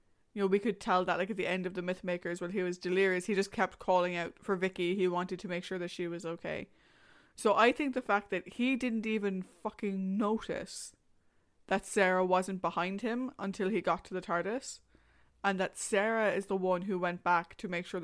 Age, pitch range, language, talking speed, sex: 20-39, 180-205 Hz, English, 225 wpm, female